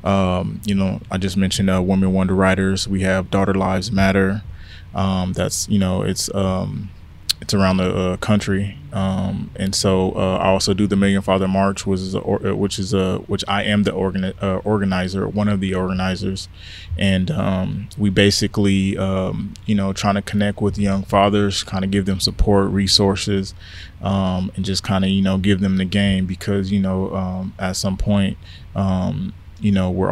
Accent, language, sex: American, English, male